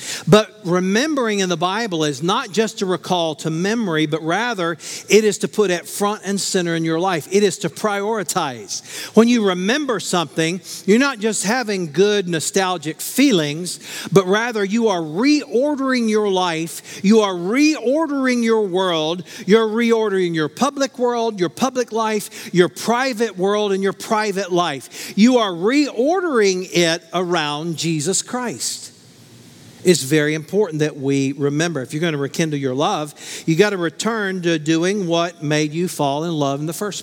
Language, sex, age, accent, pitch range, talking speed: English, male, 50-69, American, 150-210 Hz, 165 wpm